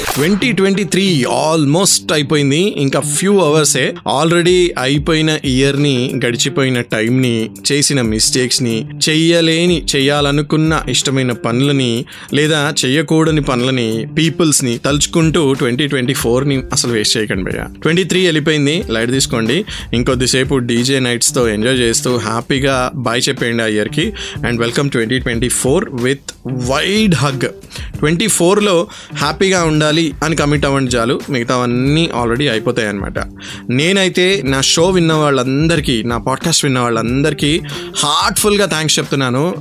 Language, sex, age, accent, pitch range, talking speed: Telugu, male, 20-39, native, 120-155 Hz, 130 wpm